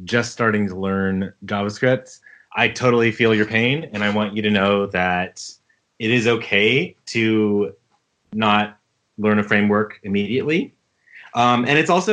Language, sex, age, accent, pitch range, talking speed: English, male, 30-49, American, 100-120 Hz, 150 wpm